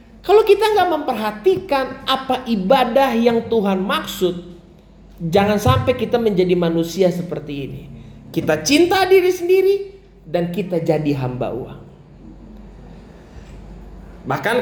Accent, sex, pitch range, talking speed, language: native, male, 145-225 Hz, 105 wpm, Indonesian